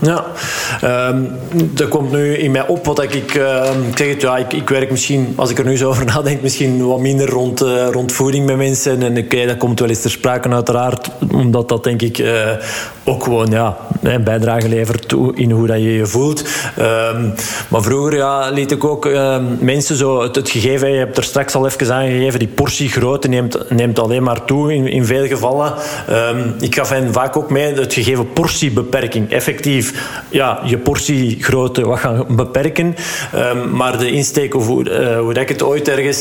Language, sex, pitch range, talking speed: Dutch, male, 120-140 Hz, 200 wpm